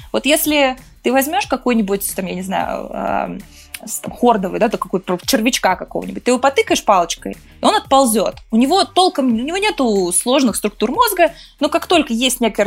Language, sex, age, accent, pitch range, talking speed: Russian, female, 20-39, native, 210-280 Hz, 180 wpm